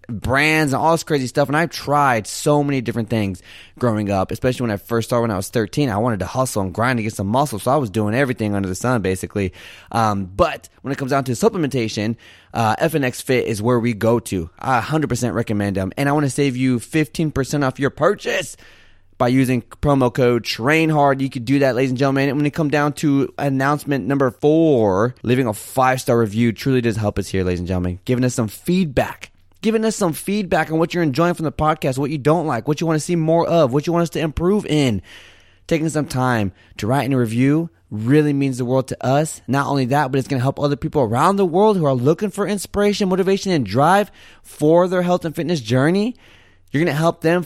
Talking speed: 235 wpm